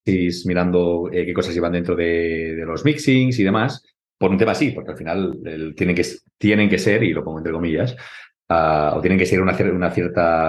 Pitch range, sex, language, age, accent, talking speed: 80-105 Hz, male, Spanish, 40-59, Spanish, 225 wpm